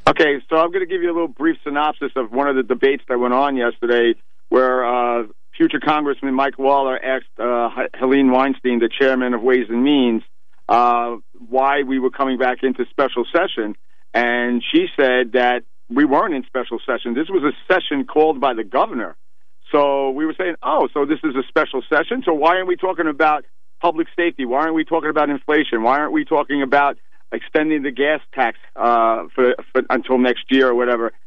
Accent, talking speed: American, 200 wpm